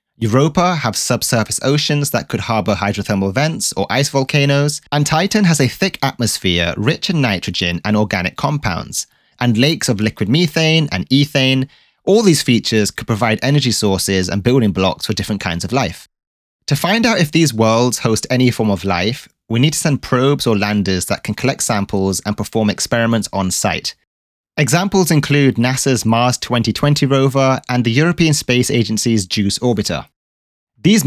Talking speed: 170 wpm